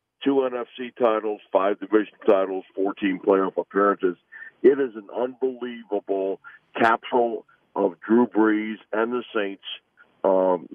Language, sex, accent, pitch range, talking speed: English, male, American, 100-130 Hz, 125 wpm